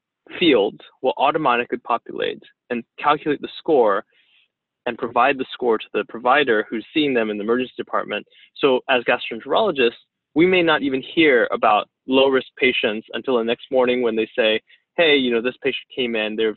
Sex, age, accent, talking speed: male, 20-39, American, 175 wpm